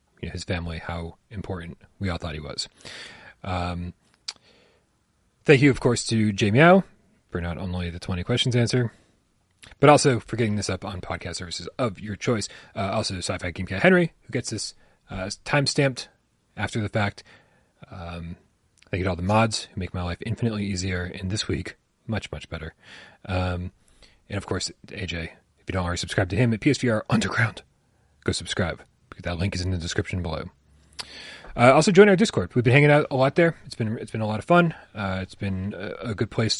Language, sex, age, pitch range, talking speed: English, male, 30-49, 90-120 Hz, 200 wpm